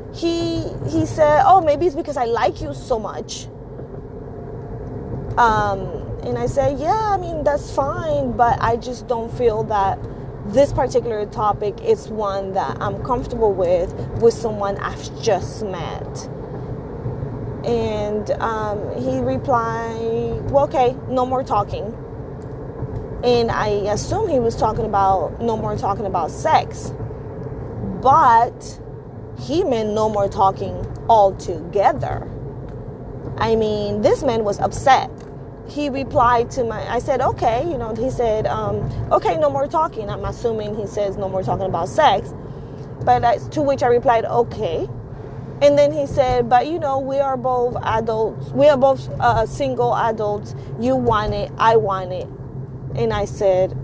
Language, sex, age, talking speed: English, female, 20-39, 150 wpm